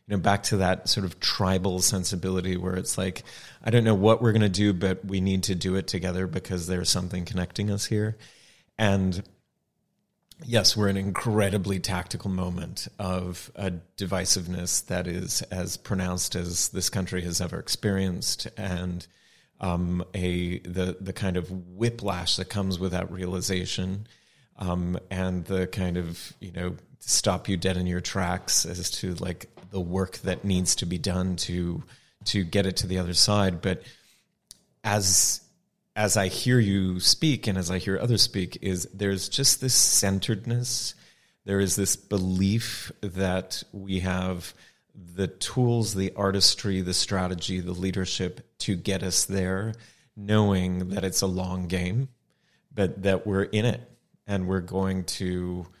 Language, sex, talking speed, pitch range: English, male, 160 wpm, 90-105 Hz